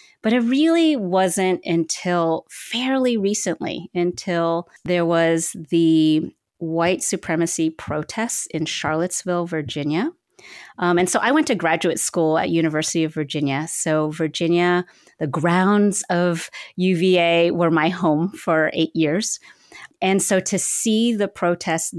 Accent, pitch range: American, 155-185 Hz